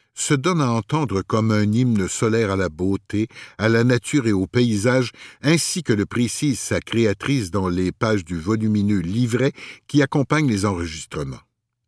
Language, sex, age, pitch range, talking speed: French, male, 60-79, 105-145 Hz, 165 wpm